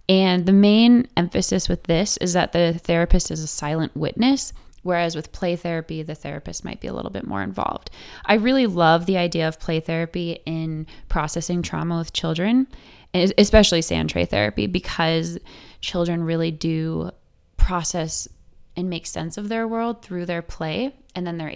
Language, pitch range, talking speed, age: English, 155-185 Hz, 170 wpm, 20-39